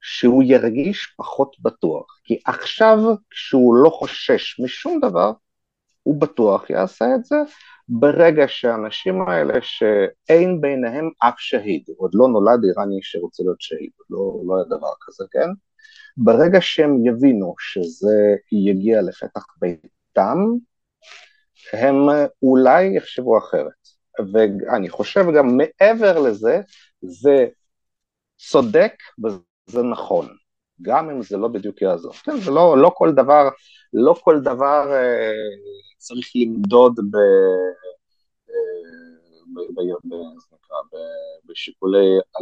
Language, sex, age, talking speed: Hebrew, male, 50-69, 105 wpm